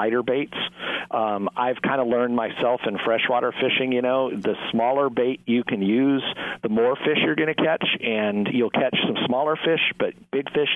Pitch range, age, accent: 110-135 Hz, 50-69, American